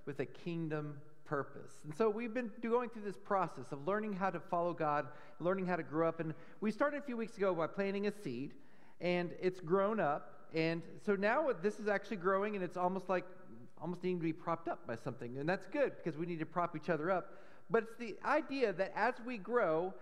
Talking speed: 230 wpm